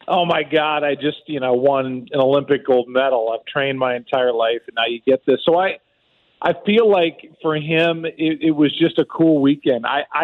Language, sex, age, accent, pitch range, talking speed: English, male, 40-59, American, 130-155 Hz, 215 wpm